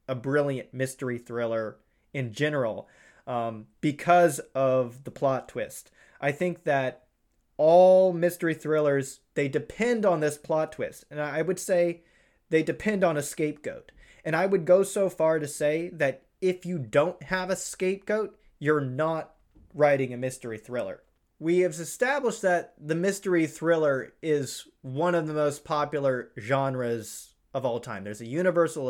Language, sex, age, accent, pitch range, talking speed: English, male, 30-49, American, 130-165 Hz, 155 wpm